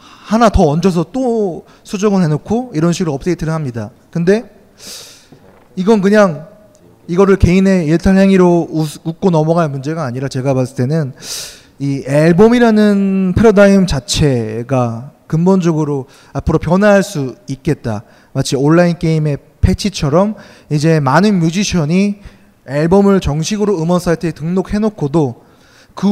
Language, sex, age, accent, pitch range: Korean, male, 20-39, native, 140-195 Hz